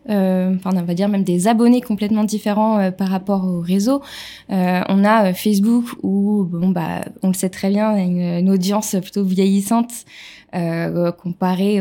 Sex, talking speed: female, 190 wpm